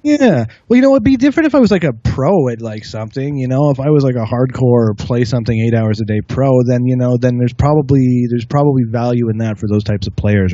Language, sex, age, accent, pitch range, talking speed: English, male, 20-39, American, 115-150 Hz, 270 wpm